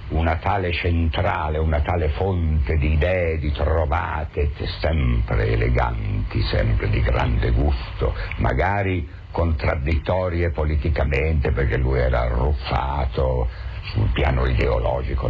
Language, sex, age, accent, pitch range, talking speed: Italian, male, 60-79, native, 65-85 Hz, 100 wpm